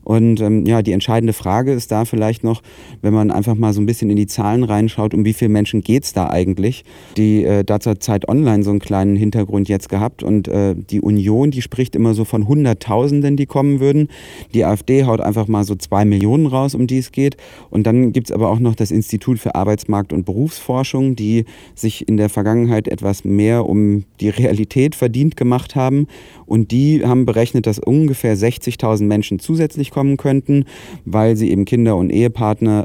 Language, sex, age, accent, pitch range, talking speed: German, male, 30-49, German, 105-125 Hz, 200 wpm